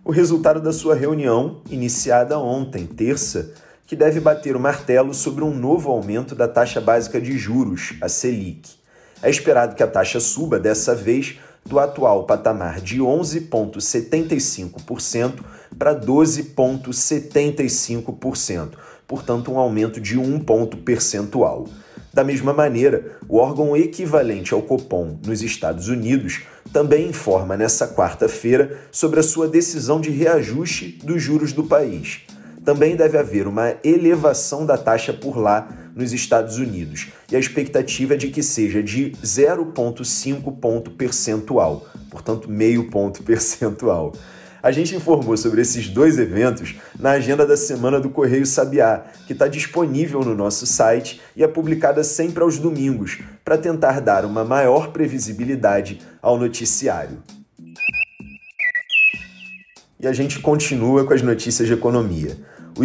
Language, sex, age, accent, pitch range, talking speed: Portuguese, male, 30-49, Brazilian, 115-150 Hz, 135 wpm